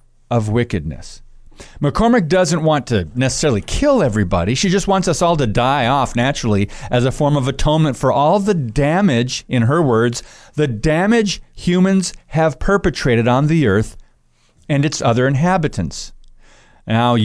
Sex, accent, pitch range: male, American, 125-175 Hz